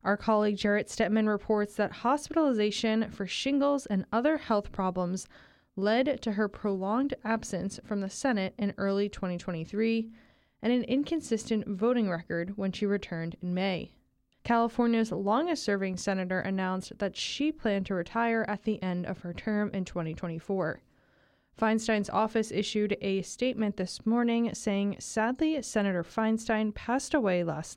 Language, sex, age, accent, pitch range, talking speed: English, female, 20-39, American, 190-225 Hz, 140 wpm